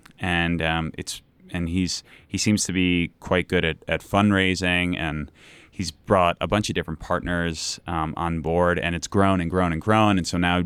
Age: 20-39